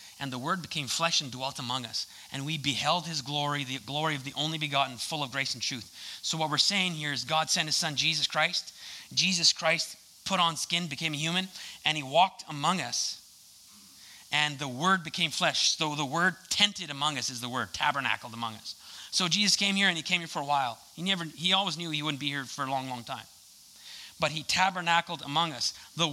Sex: male